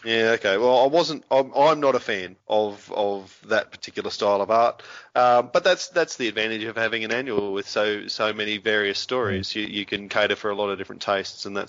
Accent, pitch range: Australian, 100-115 Hz